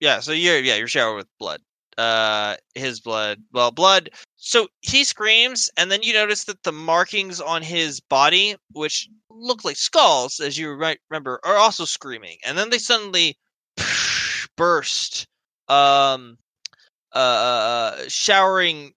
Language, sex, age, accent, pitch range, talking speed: English, male, 20-39, American, 120-160 Hz, 140 wpm